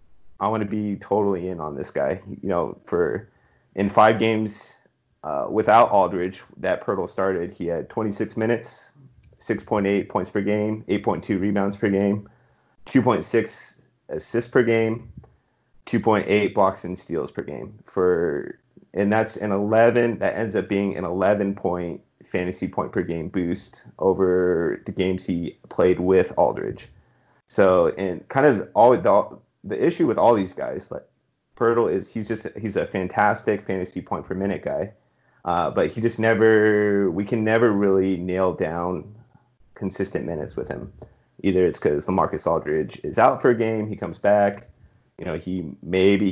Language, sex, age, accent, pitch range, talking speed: English, male, 30-49, American, 95-115 Hz, 160 wpm